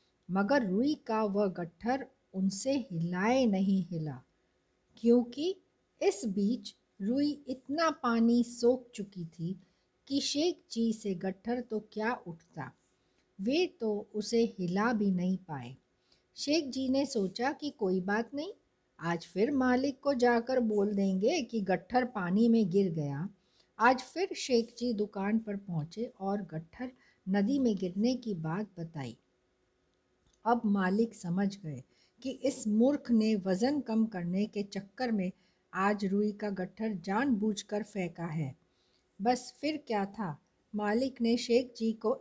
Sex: female